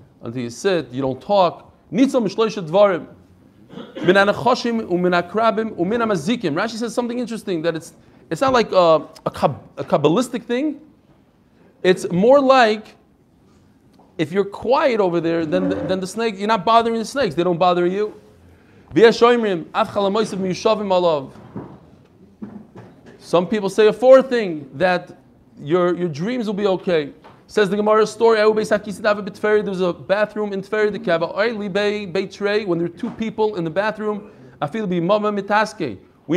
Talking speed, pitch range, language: 125 wpm, 180-225 Hz, English